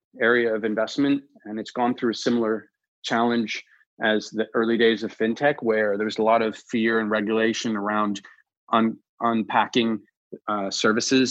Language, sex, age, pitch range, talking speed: English, male, 30-49, 105-120 Hz, 155 wpm